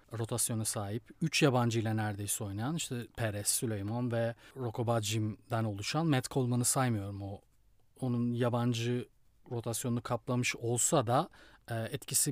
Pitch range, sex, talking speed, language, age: 115-150 Hz, male, 115 wpm, Turkish, 40-59